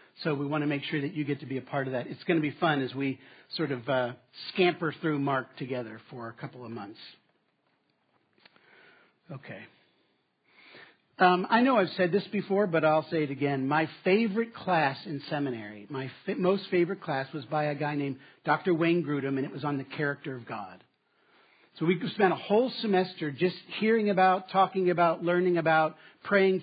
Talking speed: 195 wpm